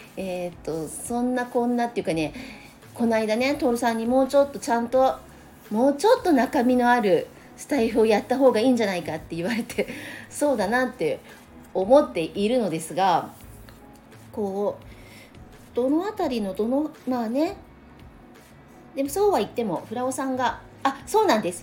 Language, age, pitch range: Japanese, 40-59, 190-255 Hz